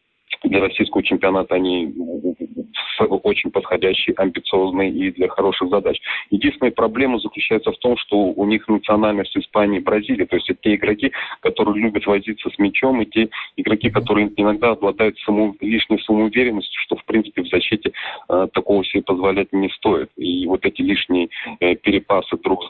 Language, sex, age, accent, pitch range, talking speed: Russian, male, 30-49, native, 95-110 Hz, 160 wpm